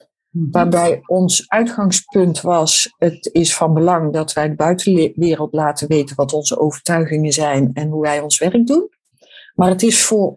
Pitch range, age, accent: 155-215 Hz, 50-69, Dutch